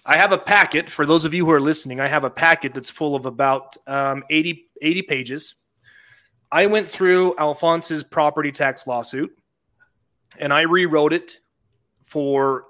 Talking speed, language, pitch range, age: 165 wpm, English, 130-165 Hz, 30-49